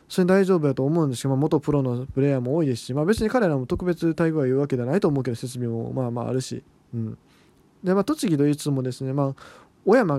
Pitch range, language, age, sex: 135-185 Hz, Japanese, 20-39, male